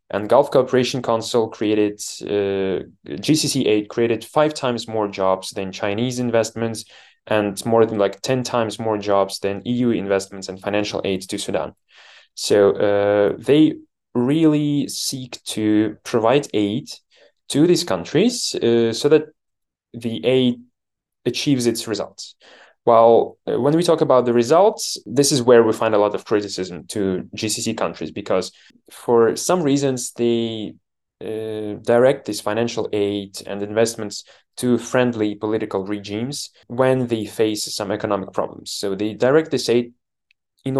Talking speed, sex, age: 145 wpm, male, 20-39